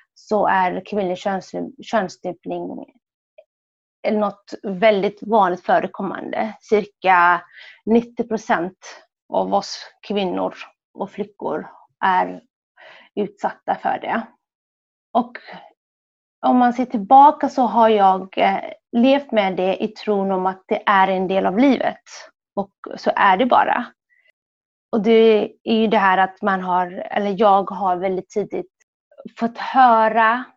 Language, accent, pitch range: Swedish, native, 190-230 Hz